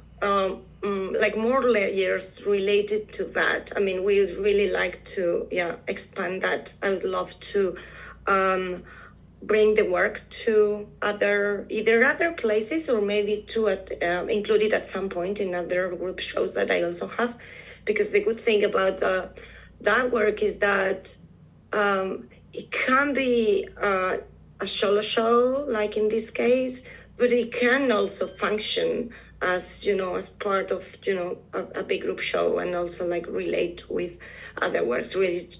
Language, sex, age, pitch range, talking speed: English, female, 30-49, 180-245 Hz, 160 wpm